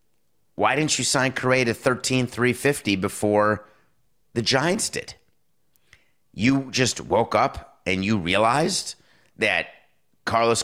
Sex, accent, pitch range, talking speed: male, American, 100-125 Hz, 115 wpm